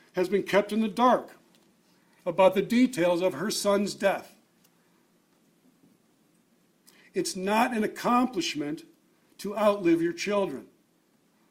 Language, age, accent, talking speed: English, 60-79, American, 110 wpm